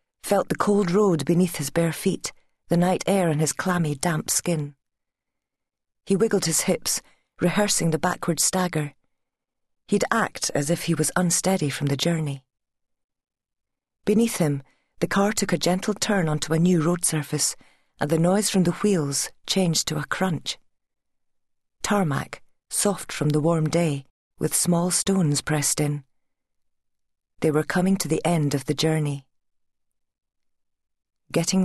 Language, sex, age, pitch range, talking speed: English, female, 40-59, 150-190 Hz, 150 wpm